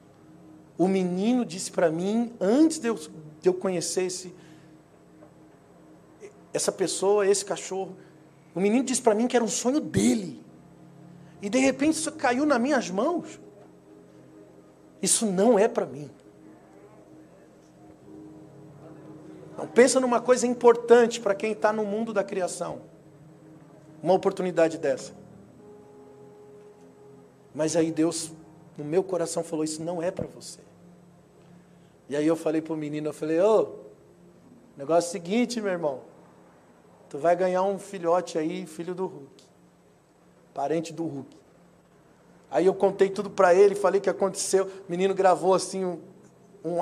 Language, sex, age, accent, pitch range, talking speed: Portuguese, male, 50-69, Brazilian, 155-205 Hz, 140 wpm